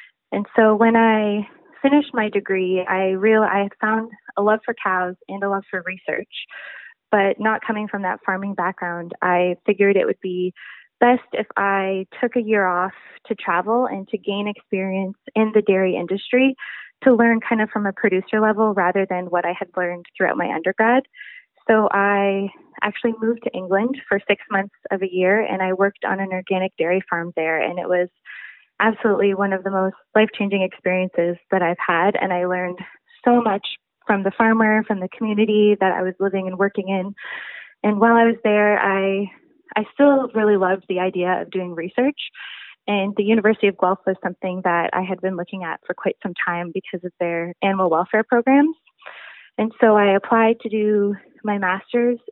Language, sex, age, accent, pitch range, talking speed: English, female, 20-39, American, 185-220 Hz, 190 wpm